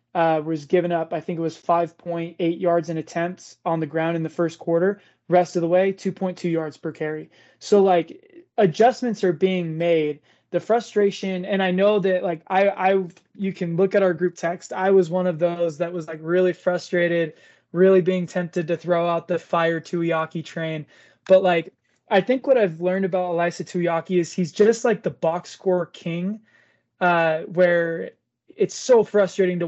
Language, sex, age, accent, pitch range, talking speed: English, male, 20-39, American, 170-195 Hz, 190 wpm